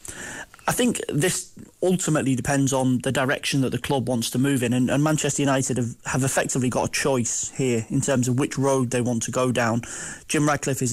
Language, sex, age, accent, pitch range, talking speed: English, male, 30-49, British, 125-140 Hz, 215 wpm